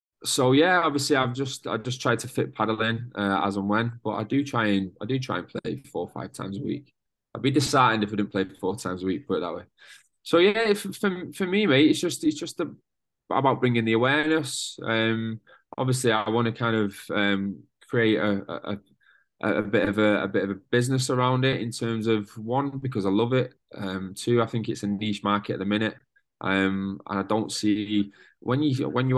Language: English